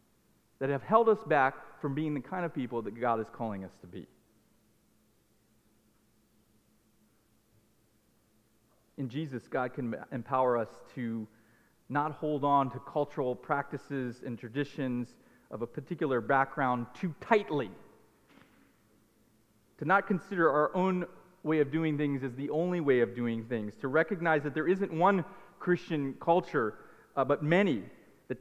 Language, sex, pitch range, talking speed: English, male, 130-170 Hz, 140 wpm